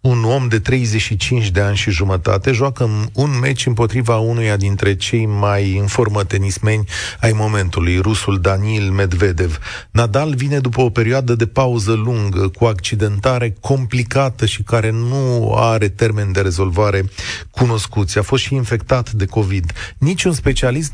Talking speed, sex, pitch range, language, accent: 145 wpm, male, 100-130 Hz, Romanian, native